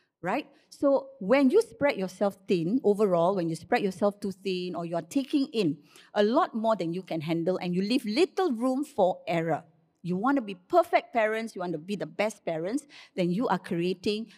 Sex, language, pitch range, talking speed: female, English, 180-245 Hz, 205 wpm